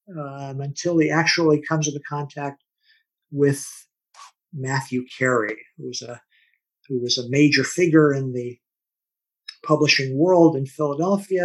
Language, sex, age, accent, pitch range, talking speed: English, male, 50-69, American, 125-145 Hz, 125 wpm